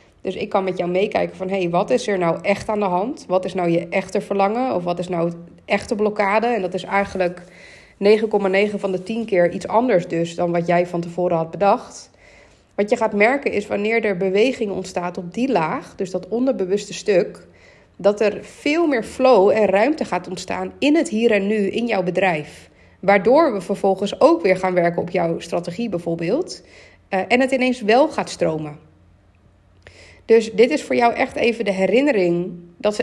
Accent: Dutch